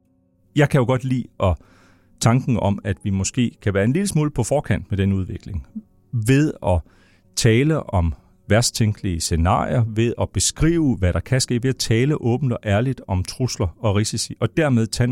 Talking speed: 185 wpm